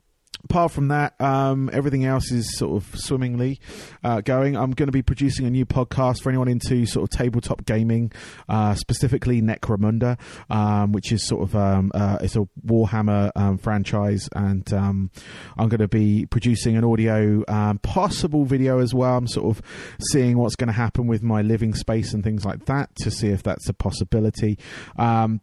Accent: British